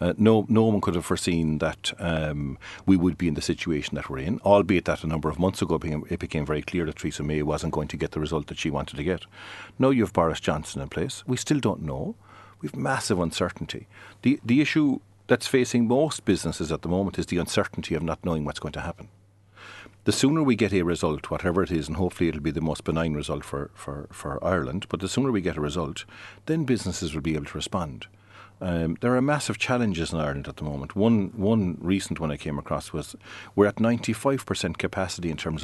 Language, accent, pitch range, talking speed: English, Irish, 80-110 Hz, 230 wpm